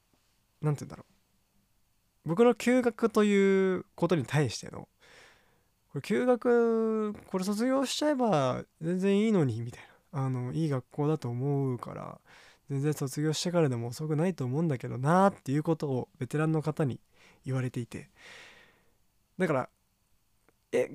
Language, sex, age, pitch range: Japanese, male, 20-39, 130-185 Hz